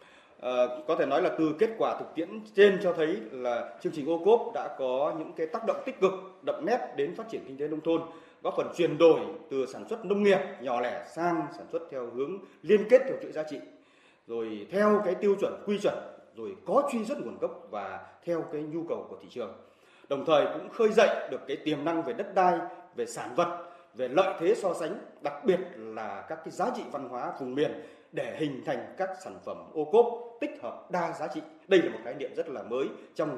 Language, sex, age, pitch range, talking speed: Vietnamese, male, 30-49, 155-220 Hz, 235 wpm